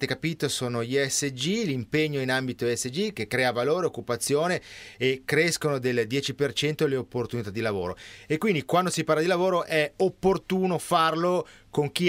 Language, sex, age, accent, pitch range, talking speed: Italian, male, 30-49, native, 115-155 Hz, 160 wpm